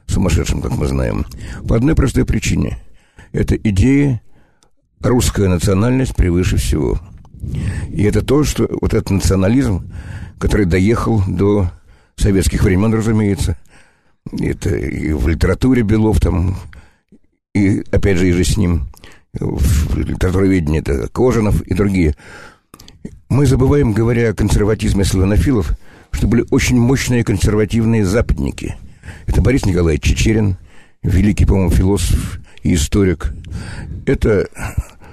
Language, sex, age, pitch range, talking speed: Russian, male, 60-79, 85-105 Hz, 115 wpm